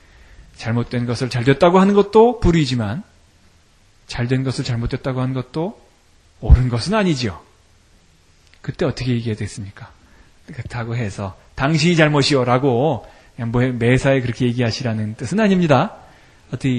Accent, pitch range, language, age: native, 100-160 Hz, Korean, 30-49